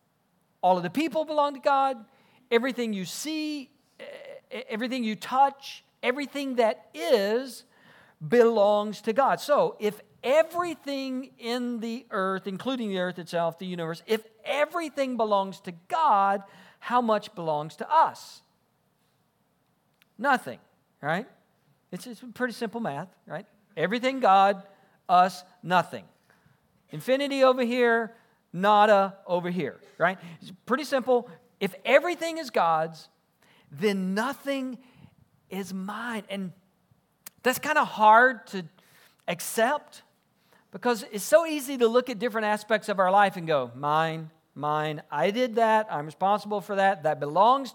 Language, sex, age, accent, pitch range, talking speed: English, male, 50-69, American, 175-245 Hz, 130 wpm